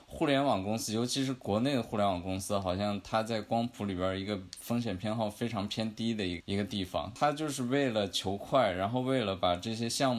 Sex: male